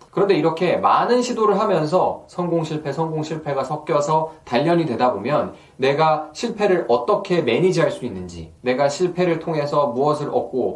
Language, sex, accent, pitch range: Korean, male, native, 145-190 Hz